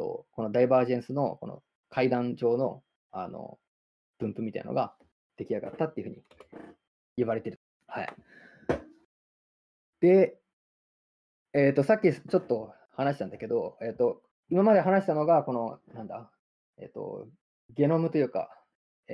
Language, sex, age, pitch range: Japanese, male, 20-39, 125-180 Hz